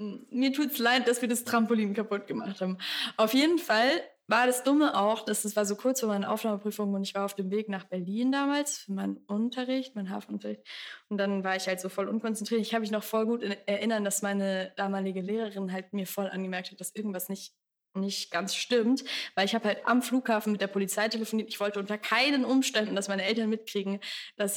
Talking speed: 220 wpm